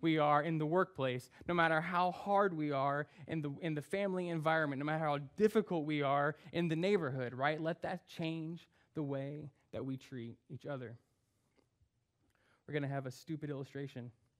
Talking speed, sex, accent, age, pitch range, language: 175 wpm, male, American, 20-39, 125-160 Hz, English